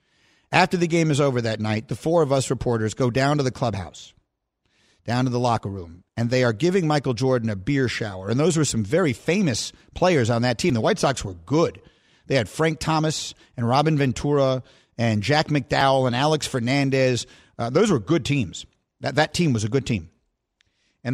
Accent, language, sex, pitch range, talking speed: American, English, male, 120-155 Hz, 205 wpm